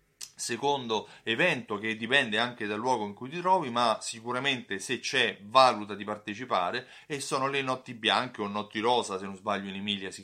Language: Italian